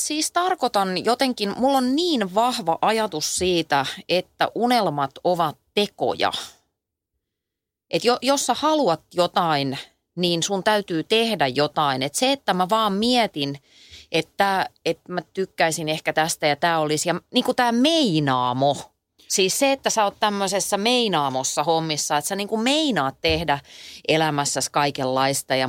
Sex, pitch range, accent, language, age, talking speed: female, 150-215 Hz, native, Finnish, 30-49, 140 wpm